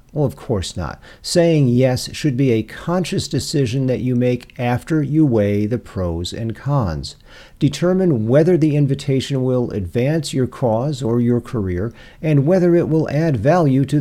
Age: 50-69